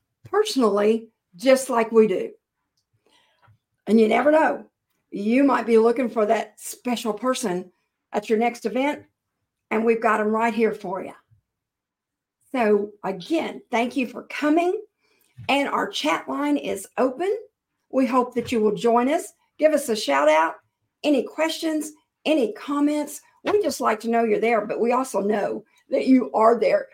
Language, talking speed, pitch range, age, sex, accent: English, 160 wpm, 220-305 Hz, 50-69, female, American